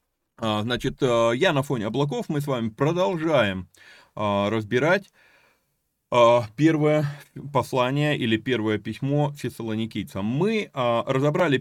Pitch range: 115-155 Hz